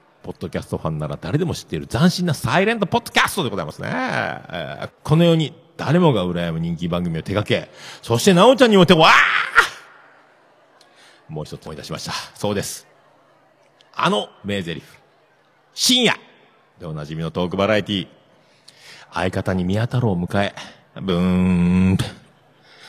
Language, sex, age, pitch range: Japanese, male, 50-69, 90-130 Hz